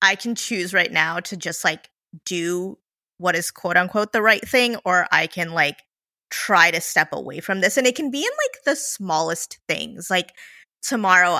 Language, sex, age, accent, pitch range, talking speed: English, female, 20-39, American, 180-245 Hz, 195 wpm